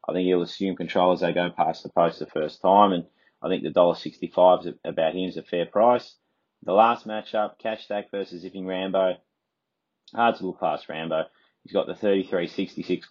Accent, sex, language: Australian, male, English